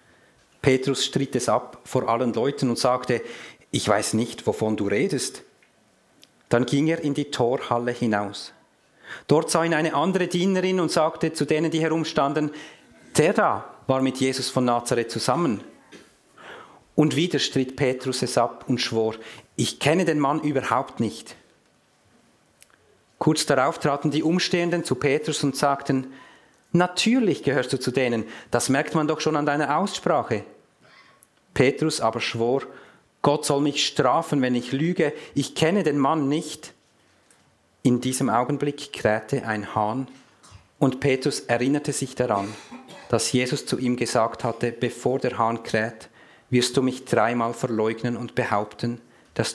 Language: German